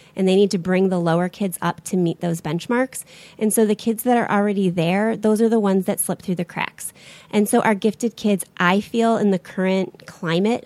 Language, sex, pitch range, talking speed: English, female, 175-220 Hz, 230 wpm